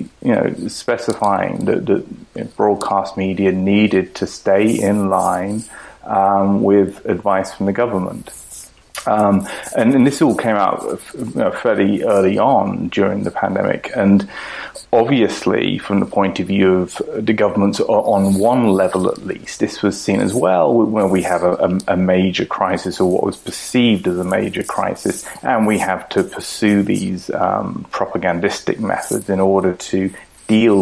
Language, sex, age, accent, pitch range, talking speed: English, male, 30-49, British, 95-100 Hz, 160 wpm